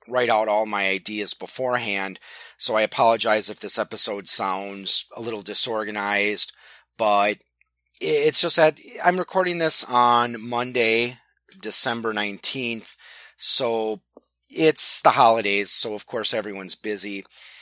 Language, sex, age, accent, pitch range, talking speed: English, male, 30-49, American, 95-125 Hz, 125 wpm